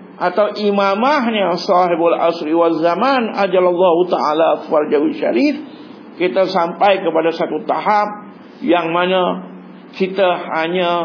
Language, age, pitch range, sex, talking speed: Malay, 50-69, 135-225 Hz, male, 100 wpm